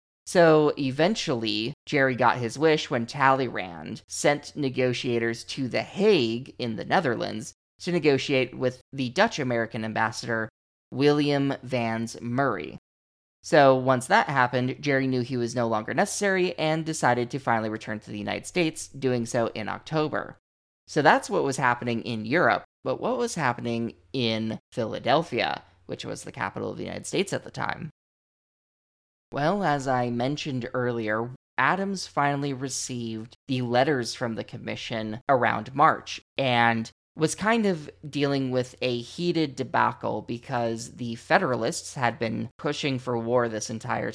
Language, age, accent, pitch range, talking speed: English, 20-39, American, 115-140 Hz, 145 wpm